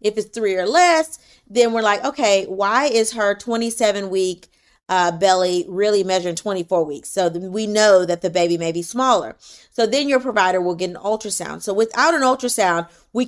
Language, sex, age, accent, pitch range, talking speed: English, female, 30-49, American, 185-235 Hz, 180 wpm